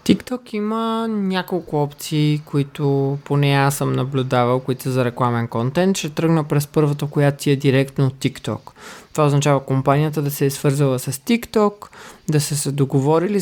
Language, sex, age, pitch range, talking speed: Bulgarian, male, 20-39, 140-165 Hz, 155 wpm